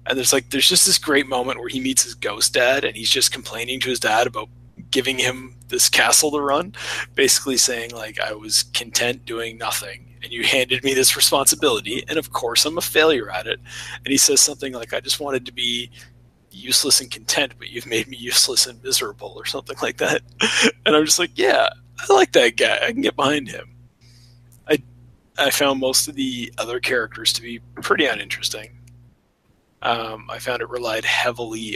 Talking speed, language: 200 wpm, English